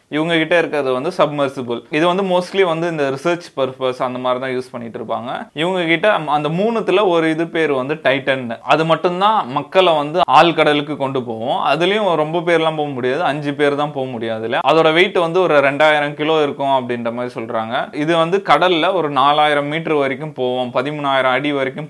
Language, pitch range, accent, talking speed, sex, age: Tamil, 125-160 Hz, native, 180 wpm, male, 20-39